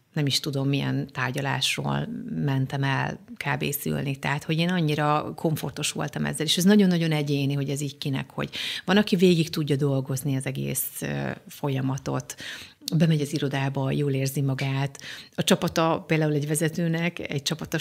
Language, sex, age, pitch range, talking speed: Hungarian, female, 30-49, 140-165 Hz, 150 wpm